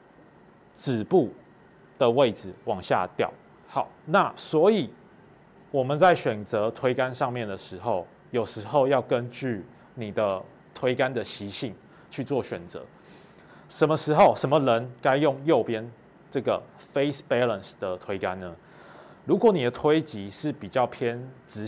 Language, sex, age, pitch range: Chinese, male, 20-39, 100-135 Hz